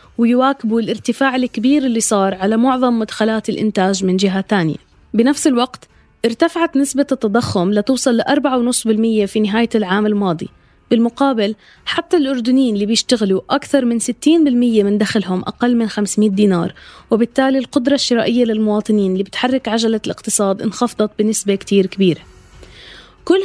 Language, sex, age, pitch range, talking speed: Arabic, female, 20-39, 210-260 Hz, 130 wpm